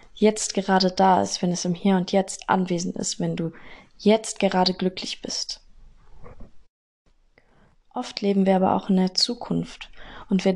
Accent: German